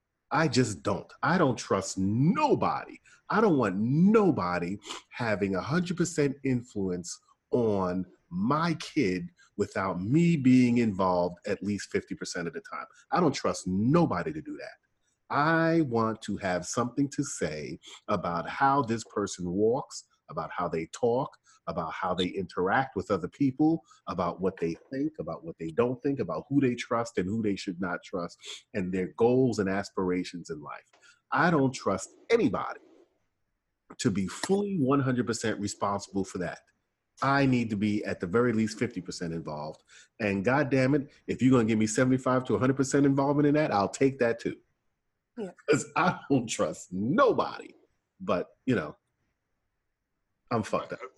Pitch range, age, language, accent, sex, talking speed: 100-140 Hz, 40-59, English, American, male, 155 wpm